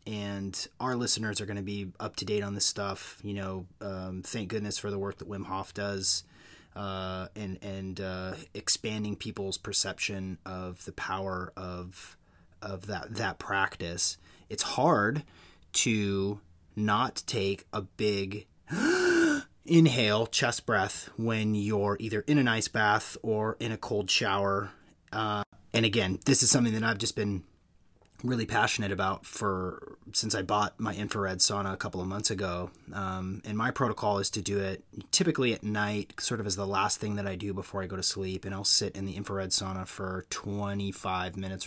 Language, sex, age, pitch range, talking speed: English, male, 30-49, 95-110 Hz, 175 wpm